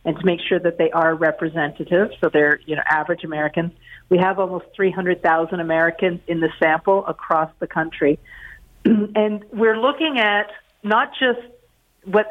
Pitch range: 165-205 Hz